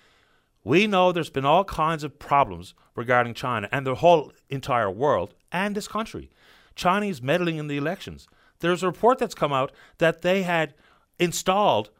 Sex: male